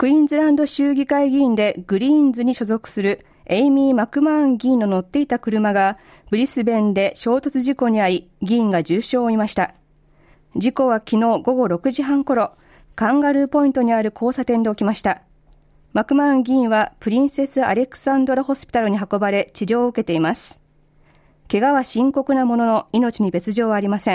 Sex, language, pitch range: female, Japanese, 205-270 Hz